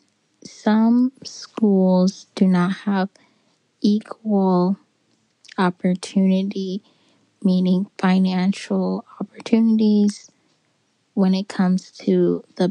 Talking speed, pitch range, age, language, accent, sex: 70 wpm, 185-220 Hz, 10-29, English, American, female